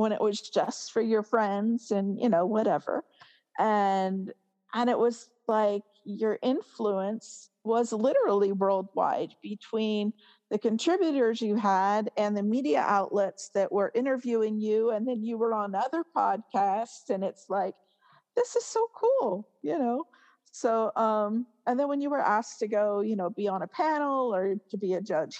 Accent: American